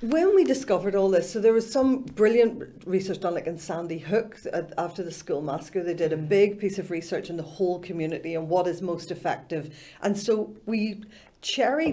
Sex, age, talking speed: female, 50-69, 200 wpm